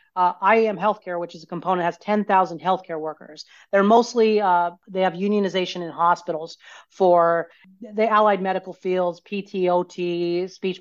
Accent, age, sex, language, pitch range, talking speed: American, 40-59, female, English, 175-210 Hz, 145 wpm